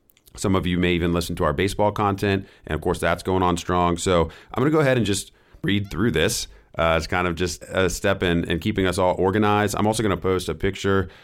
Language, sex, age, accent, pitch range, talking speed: English, male, 30-49, American, 85-110 Hz, 255 wpm